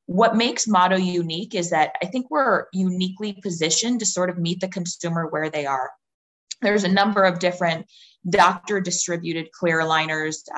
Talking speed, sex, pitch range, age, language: 165 wpm, female, 160-185 Hz, 20-39, English